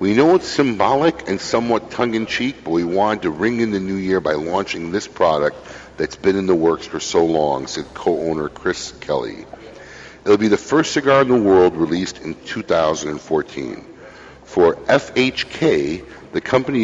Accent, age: American, 50-69